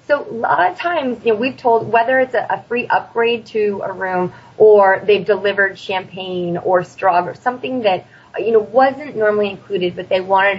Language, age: English, 20-39